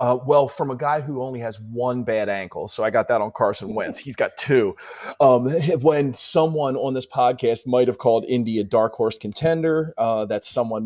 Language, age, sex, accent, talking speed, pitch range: English, 30-49, male, American, 210 wpm, 110-145 Hz